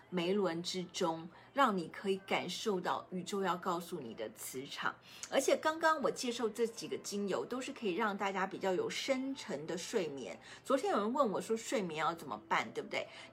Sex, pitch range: female, 180-240 Hz